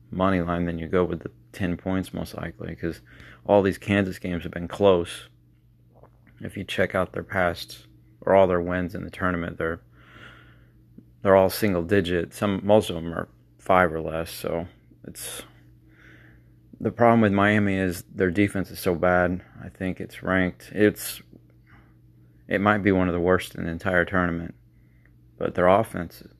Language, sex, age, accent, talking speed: English, male, 30-49, American, 175 wpm